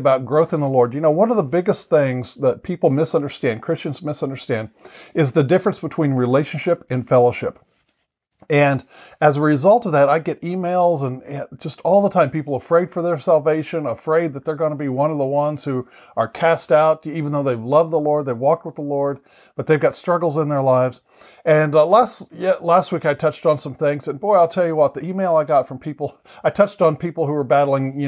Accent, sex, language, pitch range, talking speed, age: American, male, English, 135-170 Hz, 225 wpm, 50-69